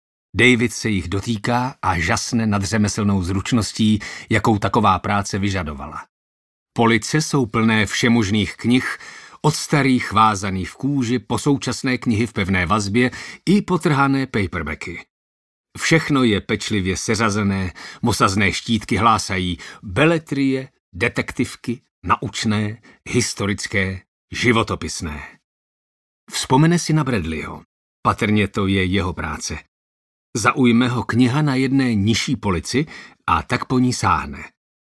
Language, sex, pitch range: Czech, male, 100-130 Hz